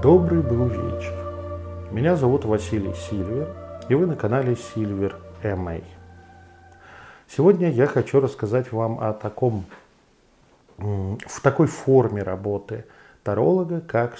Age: 40-59